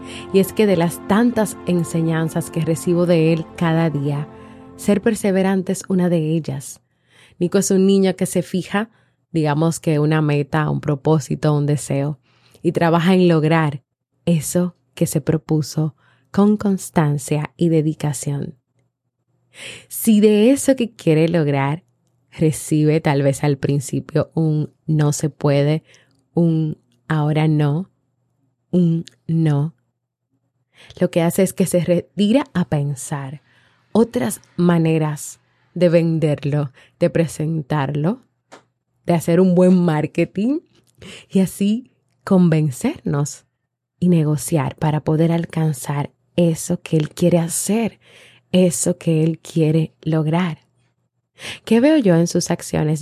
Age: 20-39